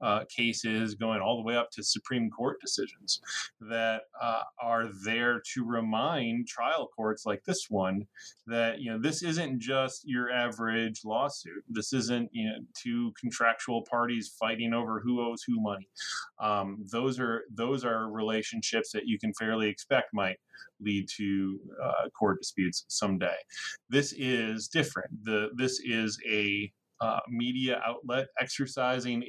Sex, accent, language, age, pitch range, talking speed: male, American, English, 20-39, 110-125 Hz, 150 wpm